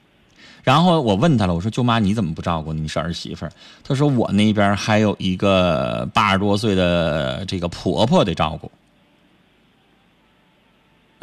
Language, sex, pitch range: Chinese, male, 95-140 Hz